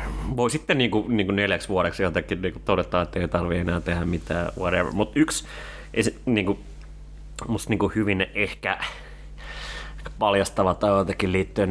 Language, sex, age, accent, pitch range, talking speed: Finnish, male, 30-49, native, 90-105 Hz, 150 wpm